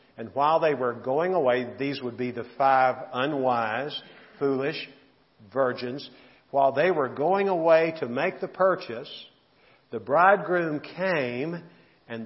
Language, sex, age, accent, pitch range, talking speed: English, male, 50-69, American, 125-170 Hz, 130 wpm